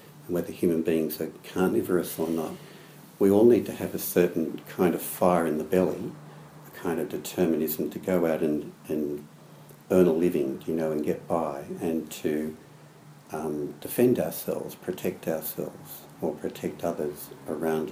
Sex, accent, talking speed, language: male, Australian, 160 wpm, English